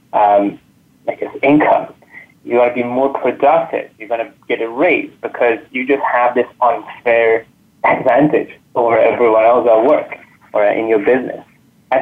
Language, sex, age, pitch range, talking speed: English, male, 20-39, 120-150 Hz, 165 wpm